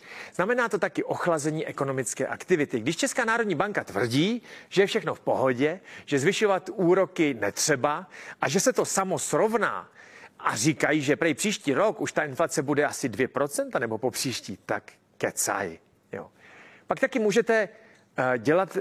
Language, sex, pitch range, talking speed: Czech, male, 140-195 Hz, 150 wpm